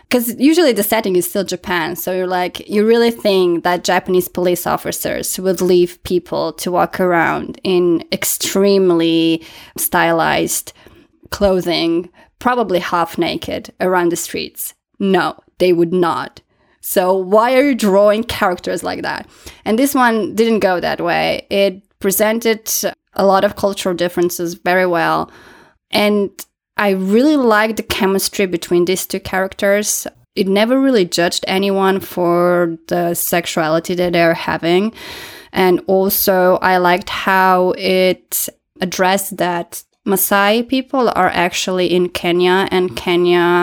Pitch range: 175-200 Hz